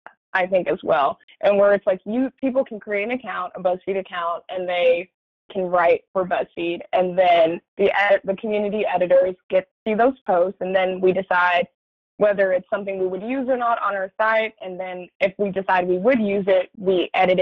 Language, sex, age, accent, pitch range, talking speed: English, female, 20-39, American, 185-215 Hz, 205 wpm